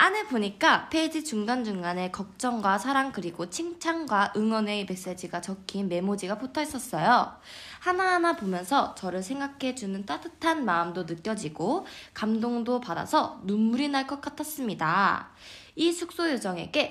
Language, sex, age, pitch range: Korean, female, 20-39, 205-320 Hz